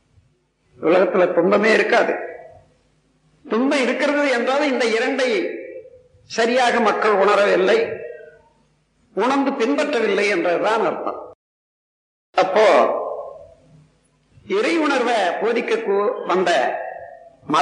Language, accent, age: Tamil, native, 50-69